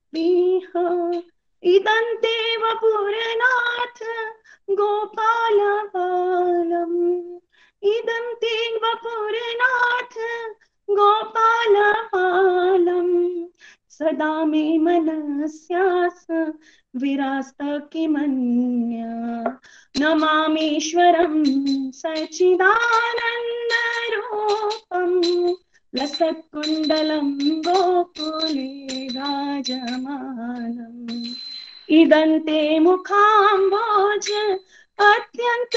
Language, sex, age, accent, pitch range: Hindi, female, 20-39, native, 315-450 Hz